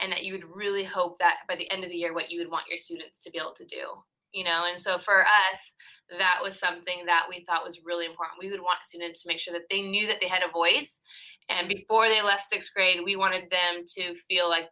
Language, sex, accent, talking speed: English, female, American, 270 wpm